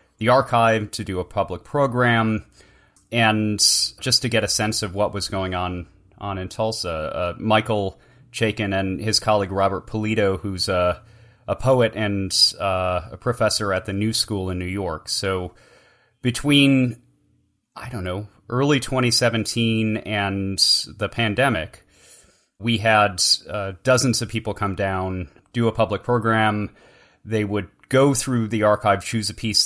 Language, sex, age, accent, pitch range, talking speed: English, male, 30-49, American, 95-115 Hz, 150 wpm